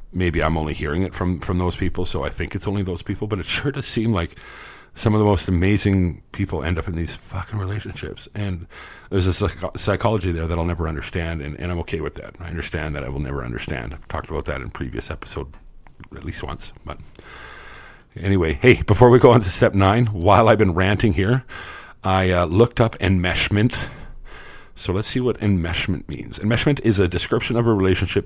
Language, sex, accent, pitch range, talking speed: English, male, American, 85-105 Hz, 210 wpm